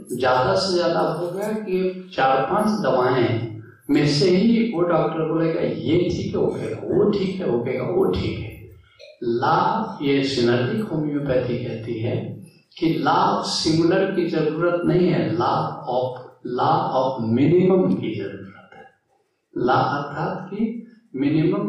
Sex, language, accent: male, Hindi, native